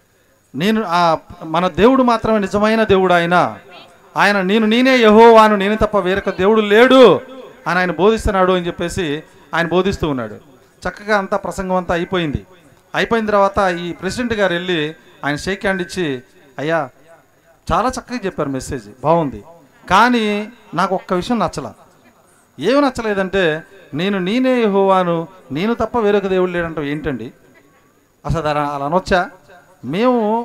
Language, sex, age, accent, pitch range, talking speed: Telugu, male, 40-59, native, 160-210 Hz, 130 wpm